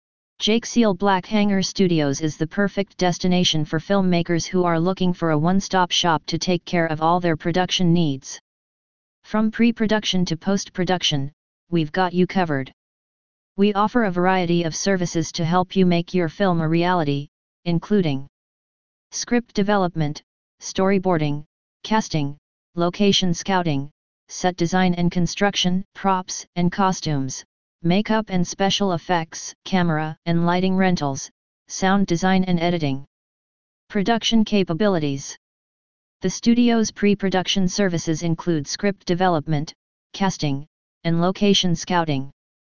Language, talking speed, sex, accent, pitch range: English, 120 wpm, female, American, 165-195 Hz